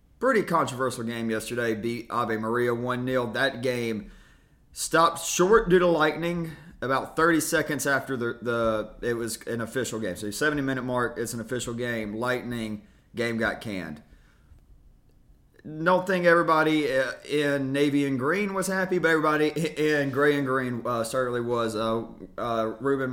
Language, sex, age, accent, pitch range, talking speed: English, male, 30-49, American, 110-145 Hz, 145 wpm